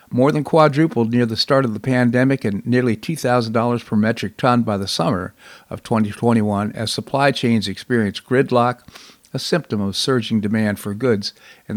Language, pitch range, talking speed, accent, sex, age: English, 105-125 Hz, 170 wpm, American, male, 50-69